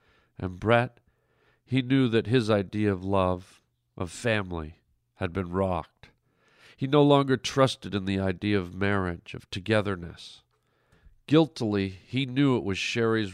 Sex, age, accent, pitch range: male, 50-69, American, 95-120 Hz